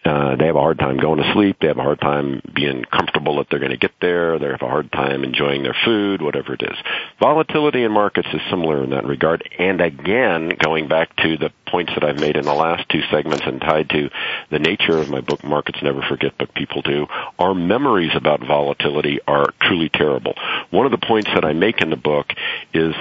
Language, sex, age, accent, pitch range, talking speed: English, male, 50-69, American, 75-85 Hz, 230 wpm